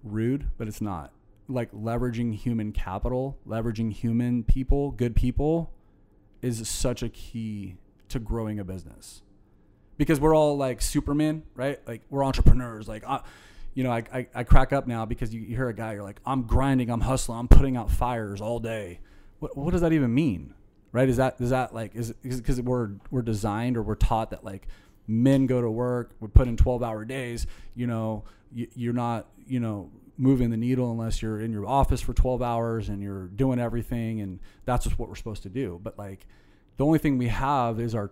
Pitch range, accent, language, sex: 105-130 Hz, American, English, male